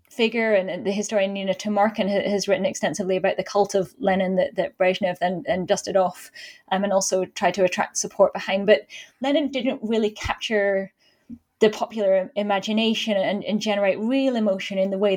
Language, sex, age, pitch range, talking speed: English, female, 10-29, 190-220 Hz, 180 wpm